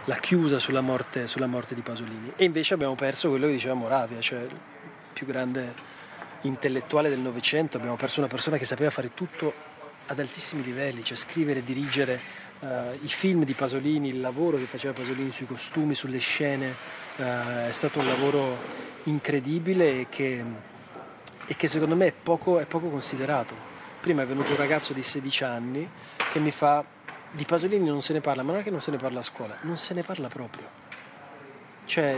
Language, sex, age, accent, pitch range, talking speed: Italian, male, 30-49, native, 135-160 Hz, 190 wpm